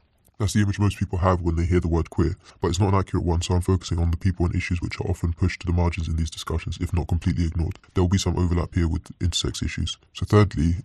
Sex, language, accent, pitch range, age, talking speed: female, English, British, 85-95 Hz, 20-39, 280 wpm